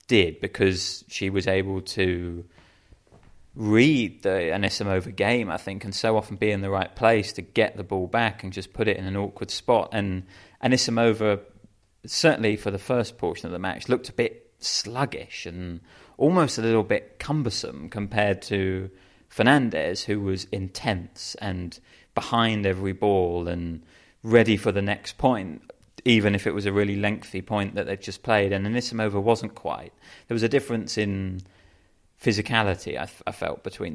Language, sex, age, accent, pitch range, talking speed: English, male, 30-49, British, 95-110 Hz, 170 wpm